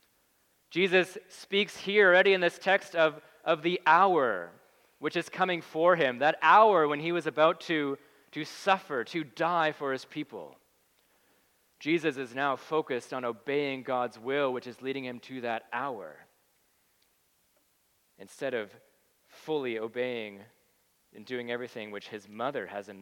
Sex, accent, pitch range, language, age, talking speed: male, American, 130-180 Hz, English, 30-49, 150 wpm